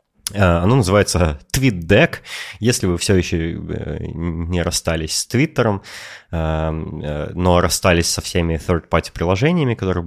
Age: 20-39